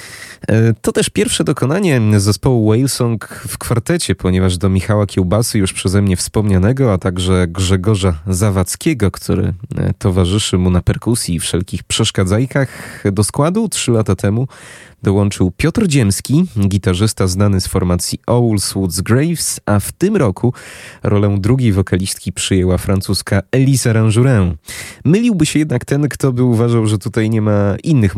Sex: male